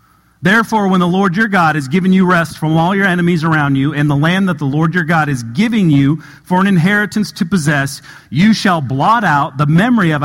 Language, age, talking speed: English, 40-59, 230 wpm